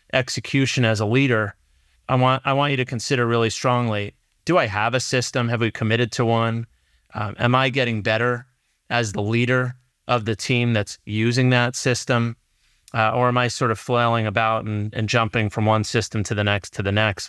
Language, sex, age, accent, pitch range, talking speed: English, male, 30-49, American, 110-130 Hz, 200 wpm